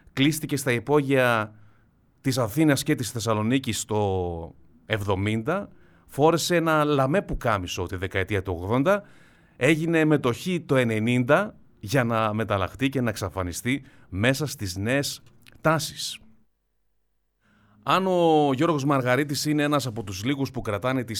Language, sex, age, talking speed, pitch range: Greek, male, 30-49, 125 wpm, 105-150 Hz